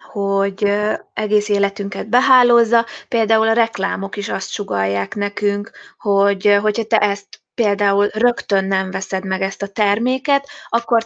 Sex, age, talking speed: female, 20-39, 130 wpm